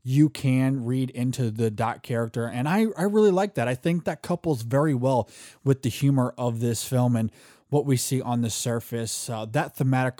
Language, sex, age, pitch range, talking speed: English, male, 20-39, 120-145 Hz, 205 wpm